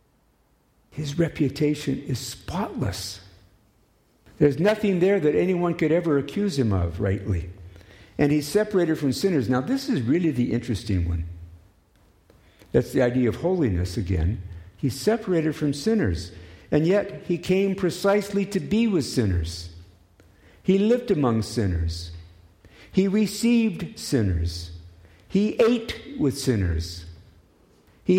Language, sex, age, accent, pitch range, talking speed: English, male, 60-79, American, 95-150 Hz, 125 wpm